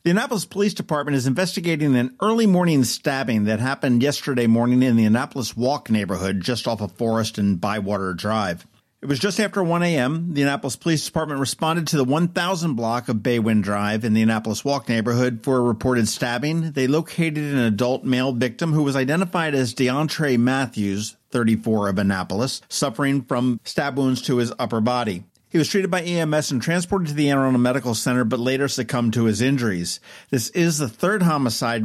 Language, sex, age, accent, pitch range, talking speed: English, male, 50-69, American, 115-155 Hz, 185 wpm